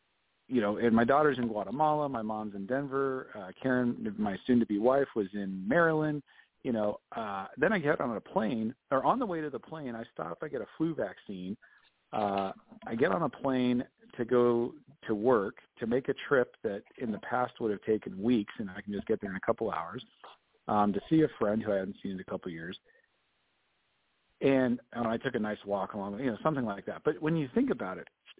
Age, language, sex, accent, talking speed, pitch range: 40-59, English, male, American, 225 wpm, 105-145 Hz